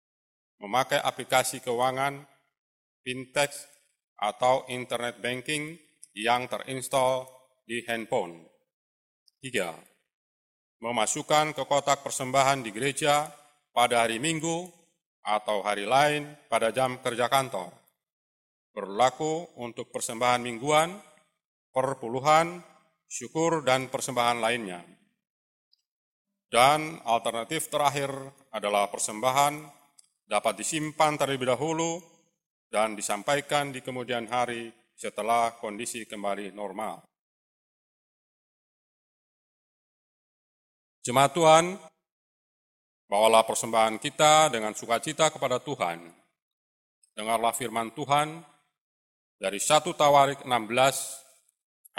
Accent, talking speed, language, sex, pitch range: native, 80 wpm, Indonesian, male, 115-145 Hz